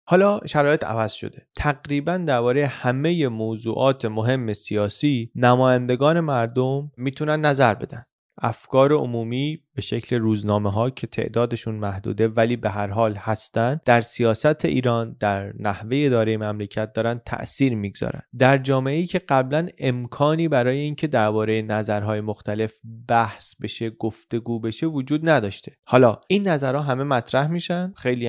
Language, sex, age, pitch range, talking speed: Persian, male, 30-49, 110-145 Hz, 130 wpm